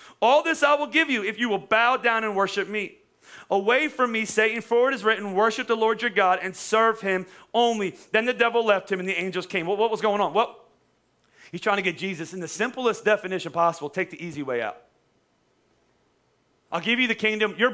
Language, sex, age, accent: English, male, 30-49, American